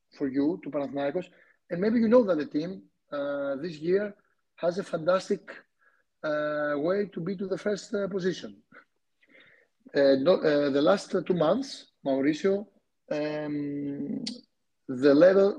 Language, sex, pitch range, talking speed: Greek, male, 140-190 Hz, 140 wpm